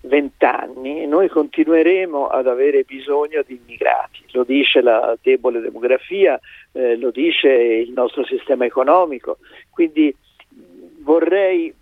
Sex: male